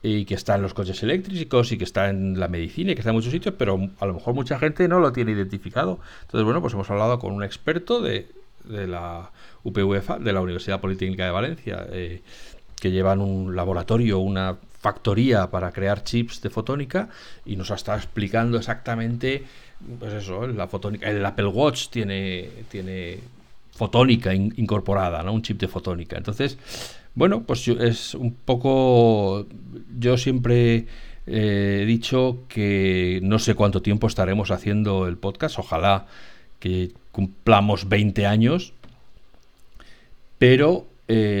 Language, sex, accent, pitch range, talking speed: Spanish, male, Spanish, 95-120 Hz, 155 wpm